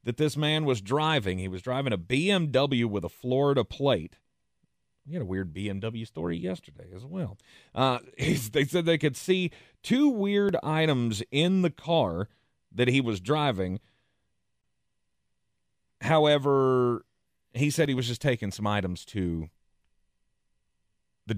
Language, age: English, 30-49